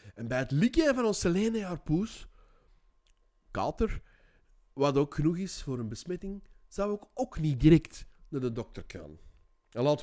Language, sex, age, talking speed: English, male, 30-49, 160 wpm